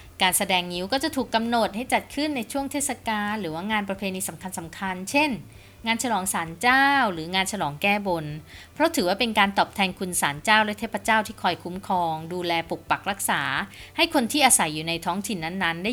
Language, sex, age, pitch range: Thai, female, 20-39, 160-220 Hz